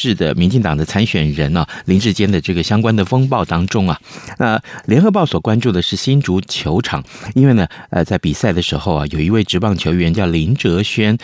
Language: Chinese